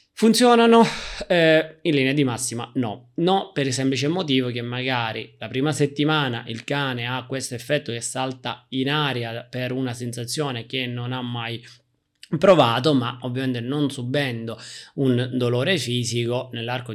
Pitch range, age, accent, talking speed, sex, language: 115-140 Hz, 20-39, native, 150 wpm, male, Italian